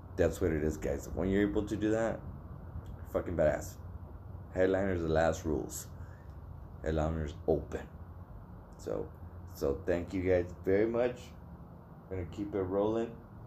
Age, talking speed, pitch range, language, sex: 20-39, 140 wpm, 90-130 Hz, English, male